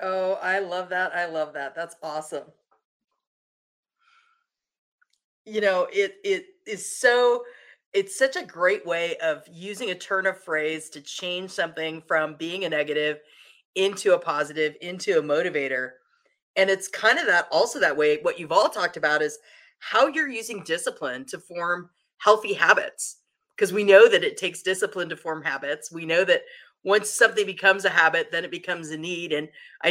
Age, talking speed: 40-59, 175 wpm